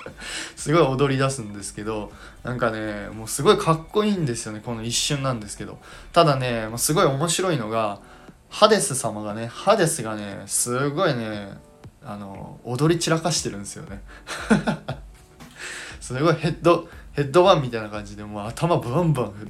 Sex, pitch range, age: male, 105-155 Hz, 20-39